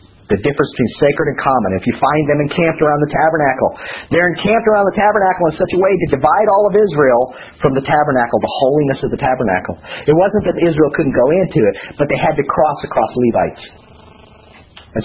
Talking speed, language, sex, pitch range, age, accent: 205 wpm, English, male, 110-160 Hz, 50-69, American